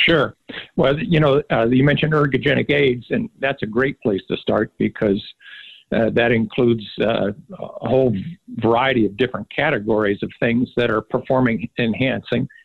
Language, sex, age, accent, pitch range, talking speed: English, male, 50-69, American, 115-140 Hz, 155 wpm